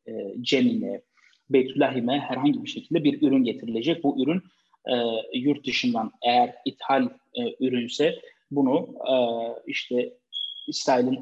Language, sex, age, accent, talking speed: Turkish, male, 30-49, native, 110 wpm